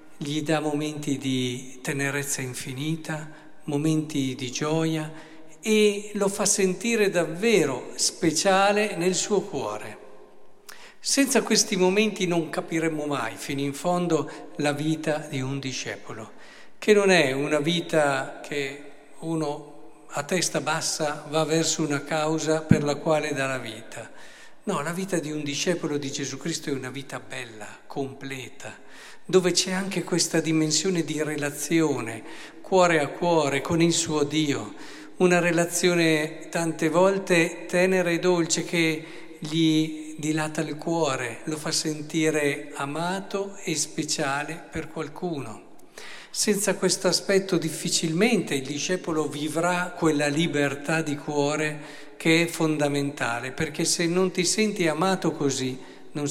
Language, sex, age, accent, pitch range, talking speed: Italian, male, 50-69, native, 145-175 Hz, 130 wpm